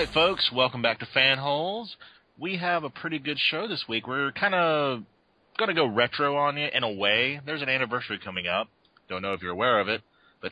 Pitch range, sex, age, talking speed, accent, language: 100-135 Hz, male, 30-49, 230 wpm, American, English